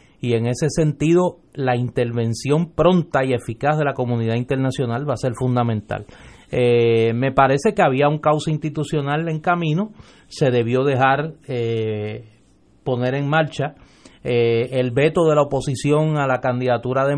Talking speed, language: 155 wpm, English